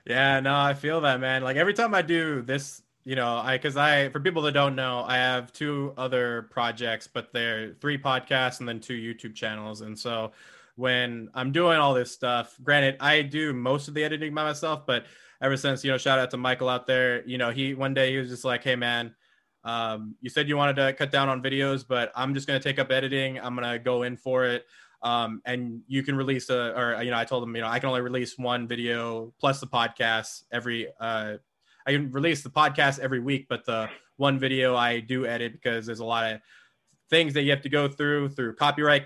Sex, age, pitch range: male, 20-39, 120-140 Hz